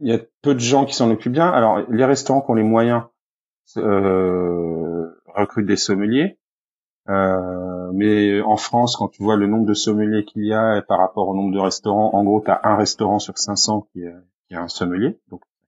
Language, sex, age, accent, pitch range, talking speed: French, male, 30-49, French, 95-115 Hz, 210 wpm